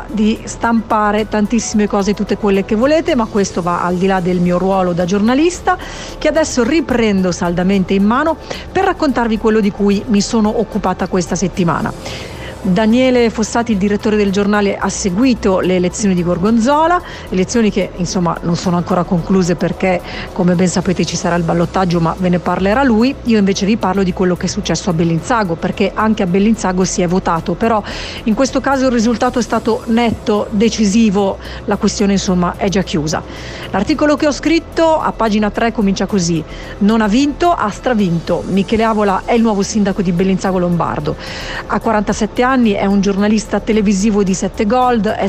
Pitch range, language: 185-230 Hz, Italian